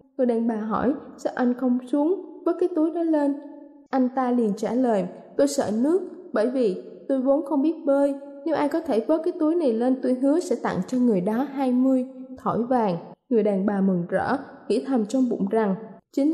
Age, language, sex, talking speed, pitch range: 20-39, Vietnamese, female, 215 wpm, 225-295 Hz